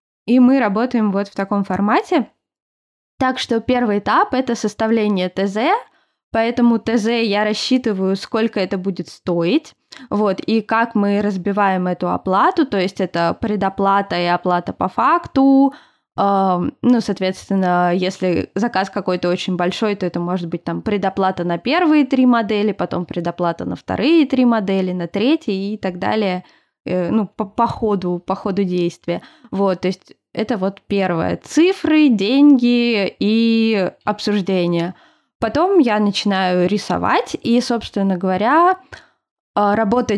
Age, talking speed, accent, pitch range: 20-39, 135 wpm, native, 185-240 Hz